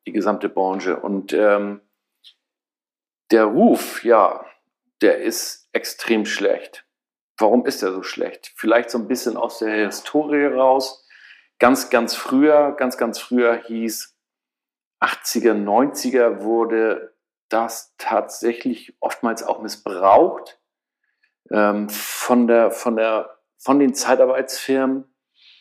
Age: 50-69